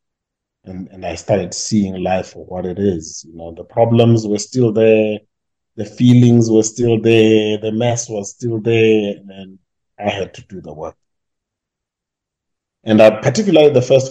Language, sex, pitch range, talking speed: English, male, 100-130 Hz, 170 wpm